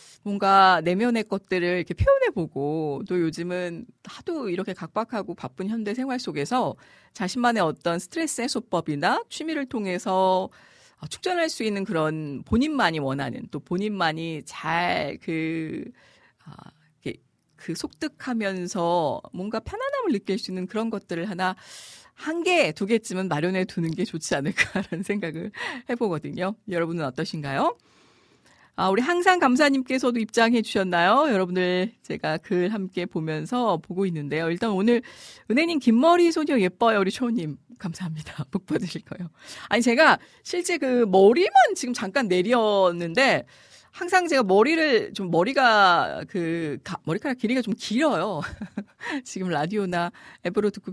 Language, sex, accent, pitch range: Korean, female, native, 175-245 Hz